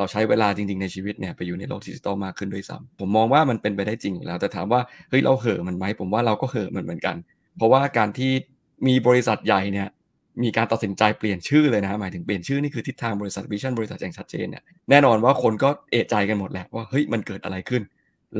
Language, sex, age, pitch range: Thai, male, 20-39, 100-120 Hz